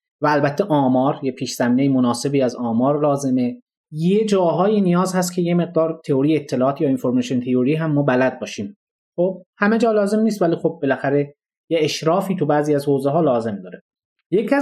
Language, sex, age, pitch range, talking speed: Persian, male, 30-49, 140-205 Hz, 175 wpm